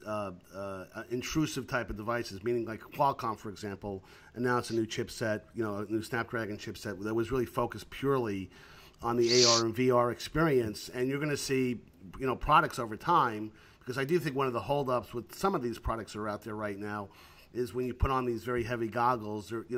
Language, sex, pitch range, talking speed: English, male, 110-130 Hz, 215 wpm